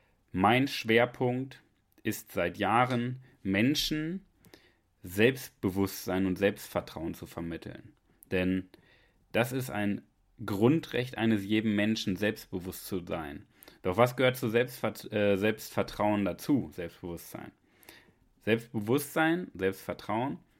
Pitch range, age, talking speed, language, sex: 95-120 Hz, 30-49, 90 wpm, German, male